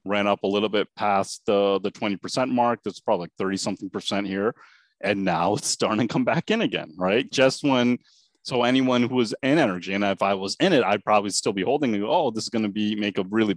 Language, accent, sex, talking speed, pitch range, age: English, American, male, 250 wpm, 100-125 Hz, 30-49